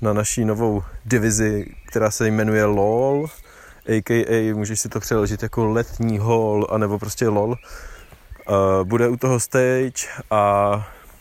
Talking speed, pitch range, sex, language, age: 130 wpm, 100-115 Hz, male, Czech, 20-39